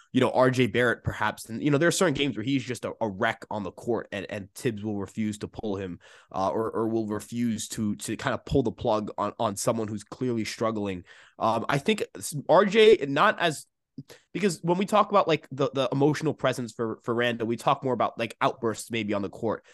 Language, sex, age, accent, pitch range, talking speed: English, male, 20-39, American, 115-145 Hz, 230 wpm